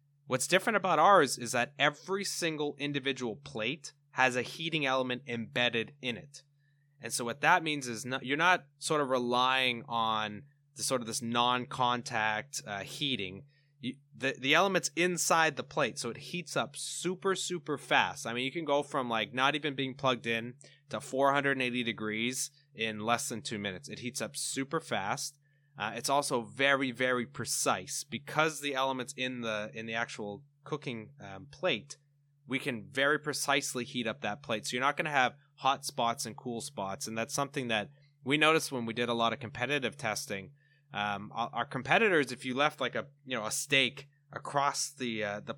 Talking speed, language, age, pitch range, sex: 185 wpm, English, 20-39, 120-145 Hz, male